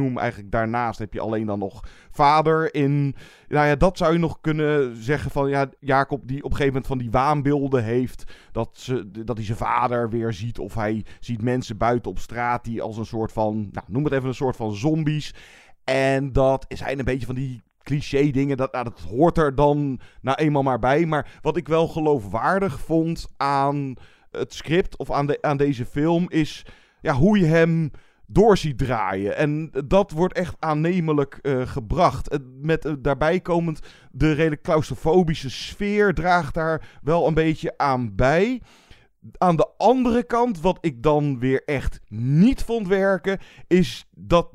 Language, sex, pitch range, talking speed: Dutch, male, 120-160 Hz, 185 wpm